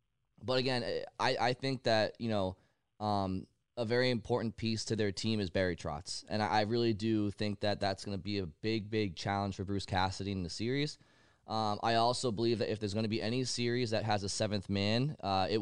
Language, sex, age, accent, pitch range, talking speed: English, male, 20-39, American, 100-115 Hz, 225 wpm